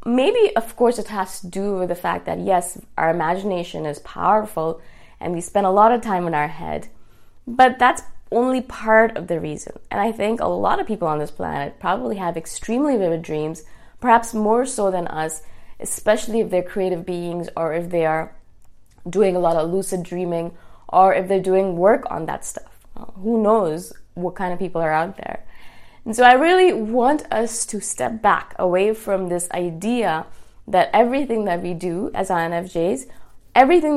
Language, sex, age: English, female, 20-39